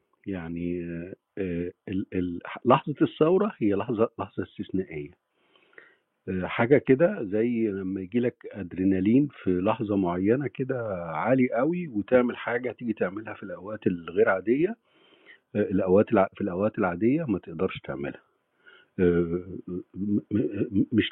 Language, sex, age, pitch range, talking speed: Arabic, male, 50-69, 90-110 Hz, 100 wpm